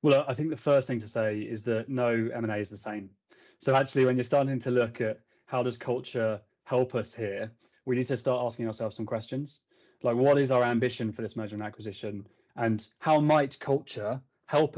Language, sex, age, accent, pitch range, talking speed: English, male, 20-39, British, 115-135 Hz, 210 wpm